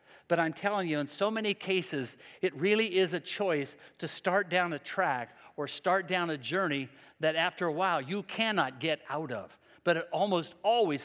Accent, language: American, English